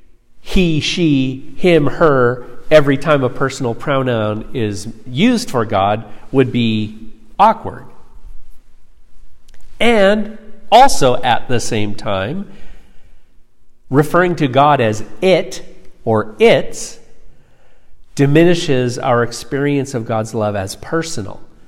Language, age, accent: English, 50-69, American